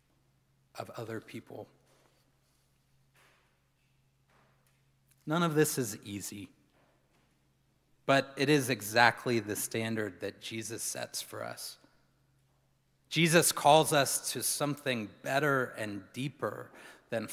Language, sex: English, male